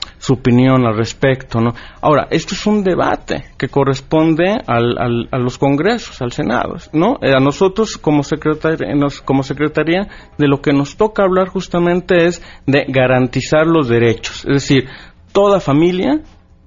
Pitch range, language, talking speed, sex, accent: 110-145 Hz, Spanish, 155 wpm, male, Mexican